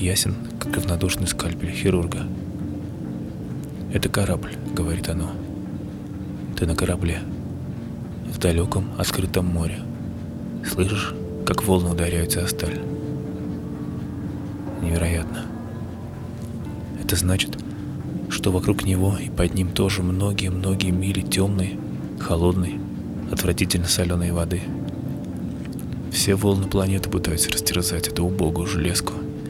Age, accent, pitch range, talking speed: 20-39, native, 85-100 Hz, 95 wpm